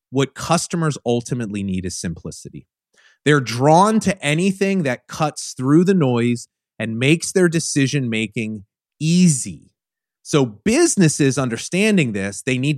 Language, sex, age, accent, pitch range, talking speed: English, male, 30-49, American, 100-140 Hz, 120 wpm